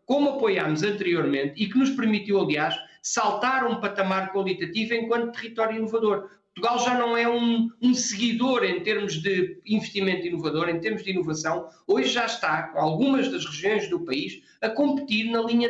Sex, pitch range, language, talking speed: male, 190-235 Hz, Portuguese, 170 wpm